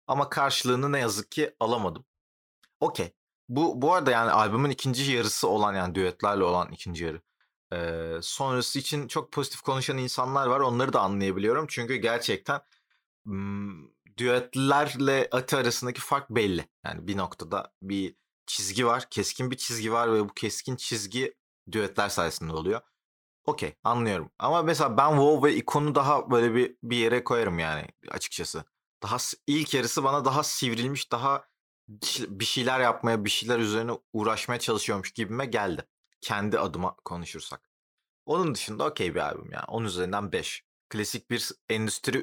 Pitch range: 100-135 Hz